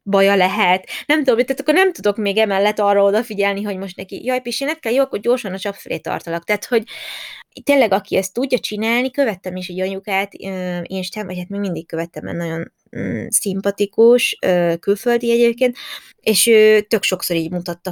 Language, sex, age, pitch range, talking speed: Hungarian, female, 20-39, 175-215 Hz, 190 wpm